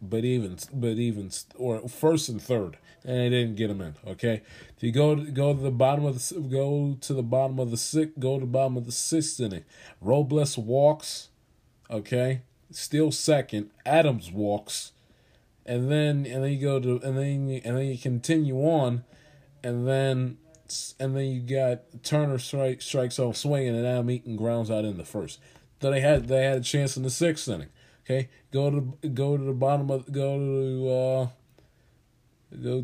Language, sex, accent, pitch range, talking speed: English, male, American, 120-145 Hz, 190 wpm